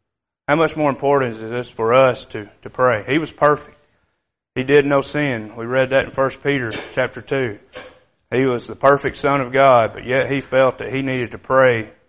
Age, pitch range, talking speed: 30-49, 125-145 Hz, 210 wpm